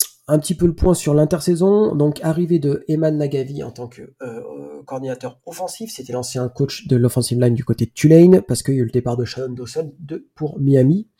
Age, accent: 40-59, French